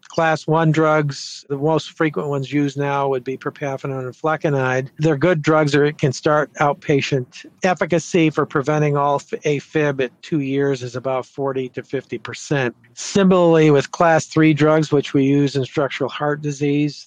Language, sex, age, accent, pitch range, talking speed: English, male, 50-69, American, 130-155 Hz, 170 wpm